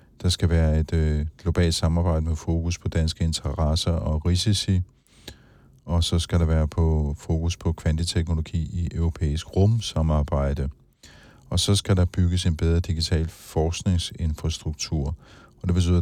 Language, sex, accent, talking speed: Danish, male, native, 140 wpm